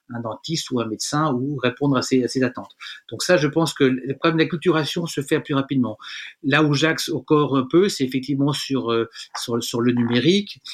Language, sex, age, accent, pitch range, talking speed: French, male, 30-49, French, 120-145 Hz, 225 wpm